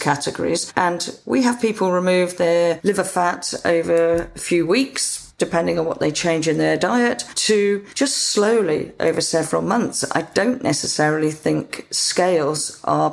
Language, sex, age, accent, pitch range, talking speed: English, female, 40-59, British, 165-200 Hz, 150 wpm